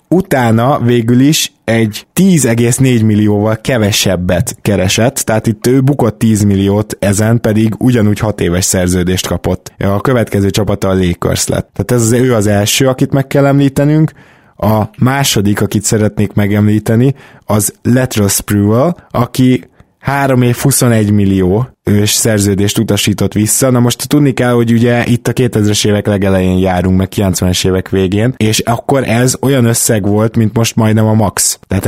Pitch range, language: 105-125 Hz, Hungarian